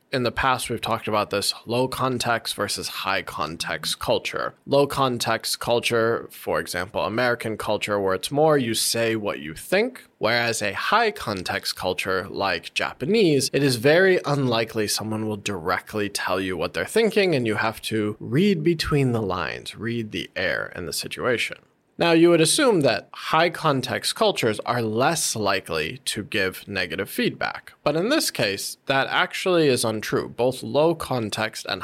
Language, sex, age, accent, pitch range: Chinese, male, 20-39, American, 105-140 Hz